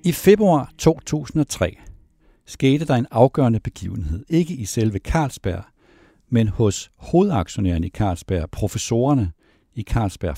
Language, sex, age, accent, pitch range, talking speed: Danish, male, 60-79, native, 90-125 Hz, 115 wpm